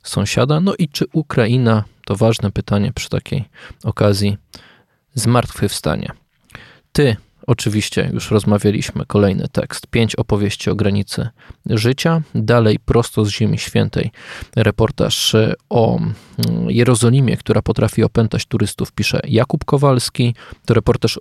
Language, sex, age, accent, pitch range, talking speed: Polish, male, 20-39, native, 110-140 Hz, 110 wpm